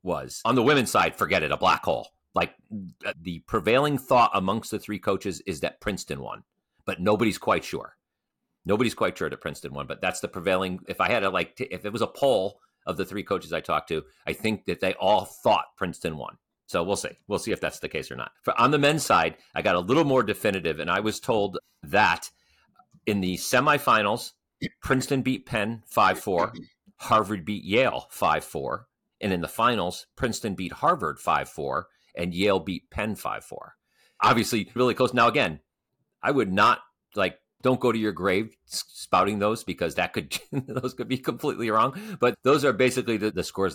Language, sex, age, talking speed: English, male, 40-59, 195 wpm